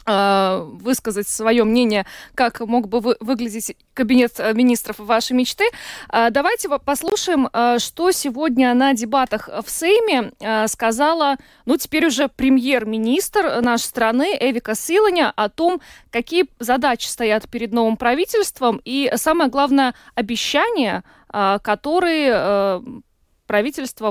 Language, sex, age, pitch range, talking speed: Russian, female, 20-39, 225-285 Hz, 105 wpm